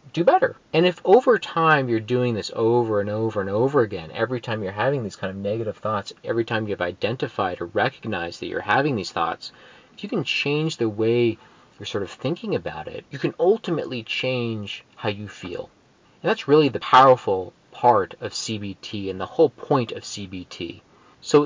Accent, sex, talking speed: American, male, 195 wpm